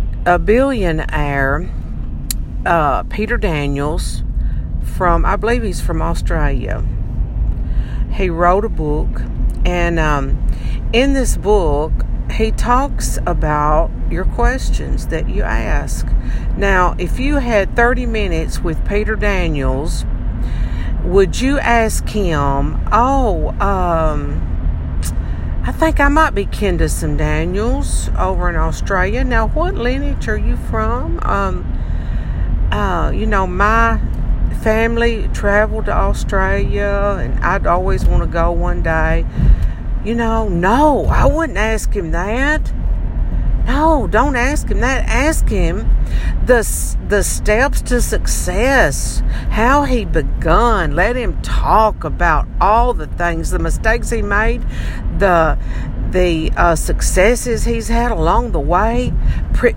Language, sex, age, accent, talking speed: English, female, 50-69, American, 120 wpm